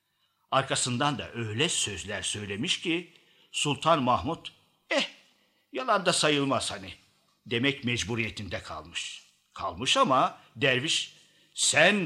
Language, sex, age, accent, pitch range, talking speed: Turkish, male, 60-79, native, 110-160 Hz, 100 wpm